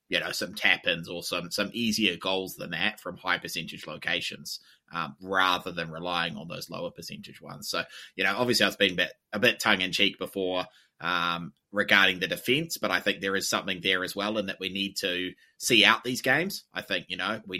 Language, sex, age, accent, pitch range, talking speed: English, male, 20-39, Australian, 95-110 Hz, 220 wpm